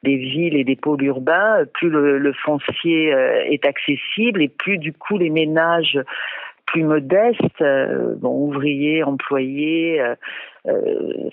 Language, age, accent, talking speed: French, 50-69, French, 140 wpm